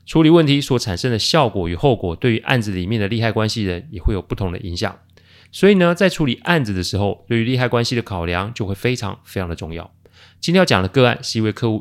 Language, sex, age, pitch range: Chinese, male, 30-49, 90-125 Hz